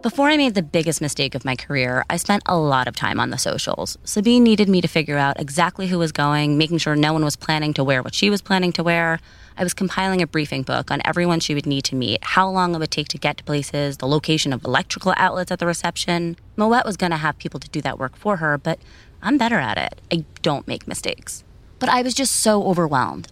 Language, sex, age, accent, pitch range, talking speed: English, female, 20-39, American, 140-205 Hz, 255 wpm